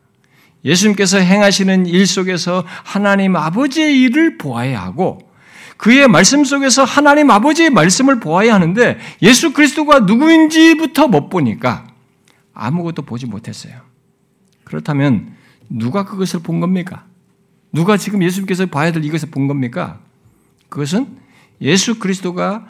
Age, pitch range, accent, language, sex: 60-79, 150-225 Hz, native, Korean, male